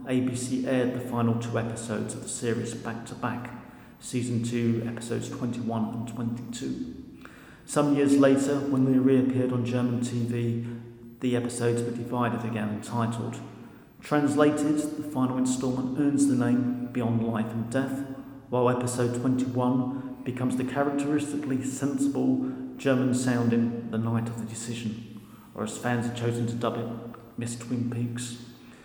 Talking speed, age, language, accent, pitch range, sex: 140 wpm, 40-59, English, British, 120-130 Hz, male